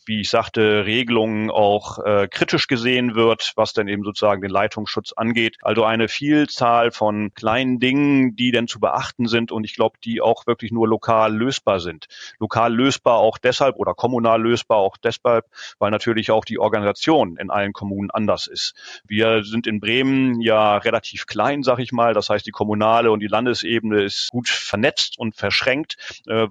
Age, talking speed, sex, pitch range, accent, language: 30-49, 180 wpm, male, 105-120 Hz, German, German